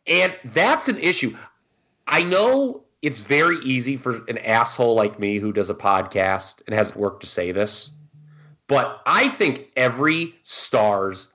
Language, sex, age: English, male, 30-49